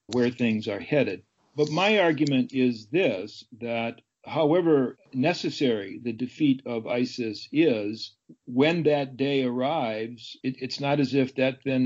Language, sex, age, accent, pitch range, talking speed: English, male, 50-69, American, 125-145 Hz, 140 wpm